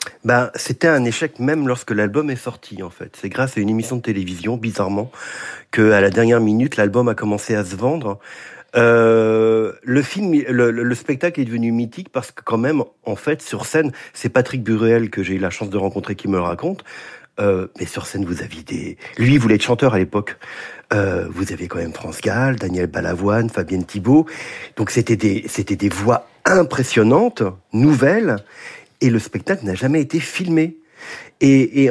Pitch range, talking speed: 105-135 Hz, 190 wpm